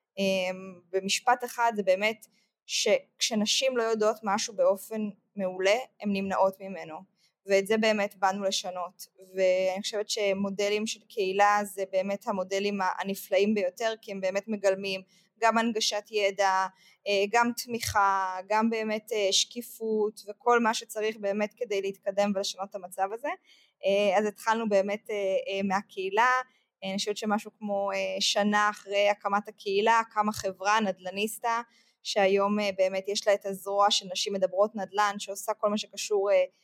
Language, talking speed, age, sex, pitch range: Hebrew, 130 wpm, 20-39, female, 195-220 Hz